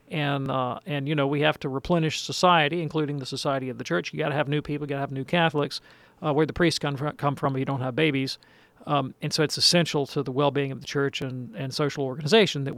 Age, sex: 40-59, male